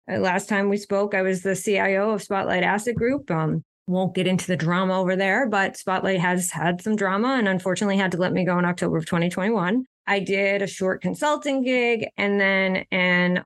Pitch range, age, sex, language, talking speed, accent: 180-210 Hz, 20-39, female, English, 205 wpm, American